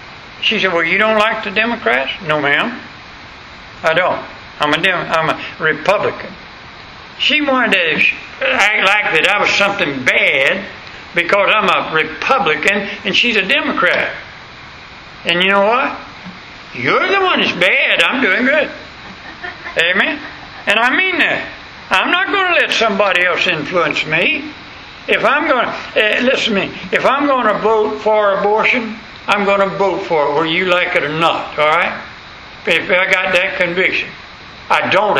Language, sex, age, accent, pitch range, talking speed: English, male, 60-79, American, 180-240 Hz, 165 wpm